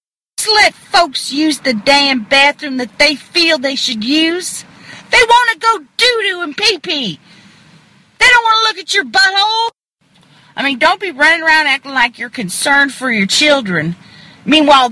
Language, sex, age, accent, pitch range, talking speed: English, female, 40-59, American, 220-345 Hz, 165 wpm